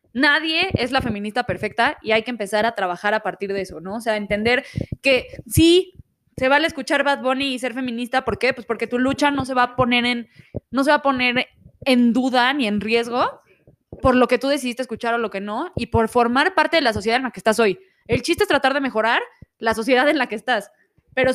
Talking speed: 240 wpm